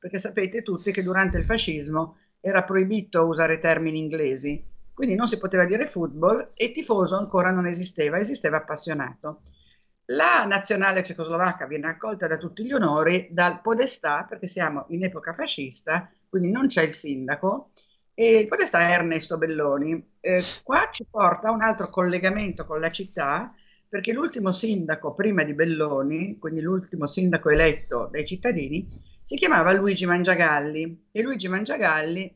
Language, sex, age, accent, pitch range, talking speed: Italian, female, 50-69, native, 160-205 Hz, 150 wpm